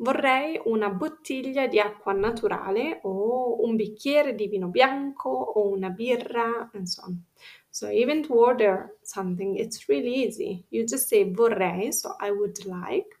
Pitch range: 195-245 Hz